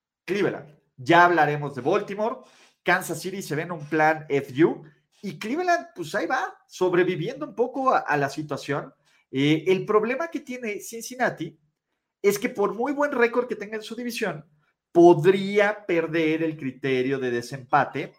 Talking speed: 160 wpm